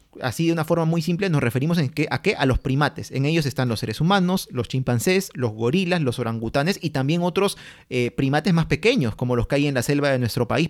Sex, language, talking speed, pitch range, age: male, Spanish, 245 wpm, 130-170 Hz, 30-49